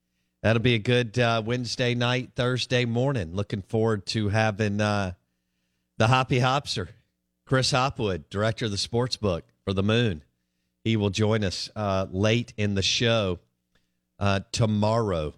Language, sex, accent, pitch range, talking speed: English, male, American, 95-125 Hz, 150 wpm